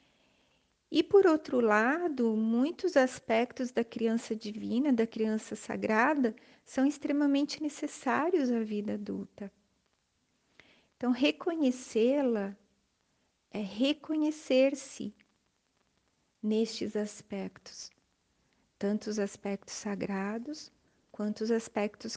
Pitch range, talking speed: 210-255 Hz, 85 wpm